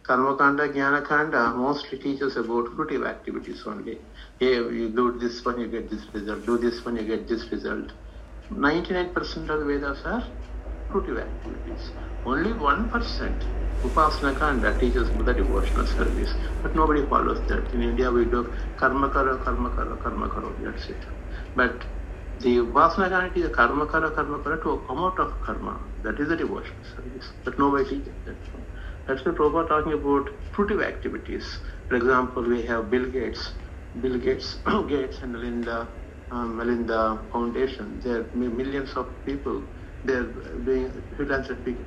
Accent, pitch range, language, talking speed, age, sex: Indian, 110-140 Hz, English, 150 wpm, 60-79, male